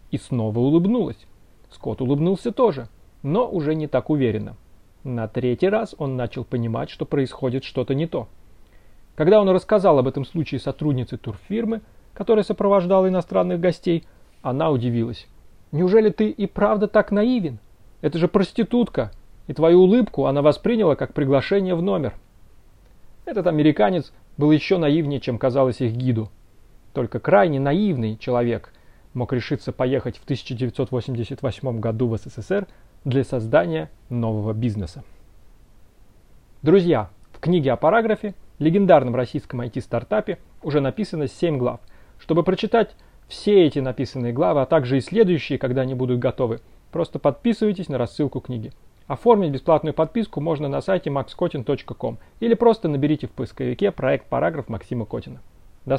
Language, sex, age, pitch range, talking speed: Russian, male, 30-49, 120-180 Hz, 135 wpm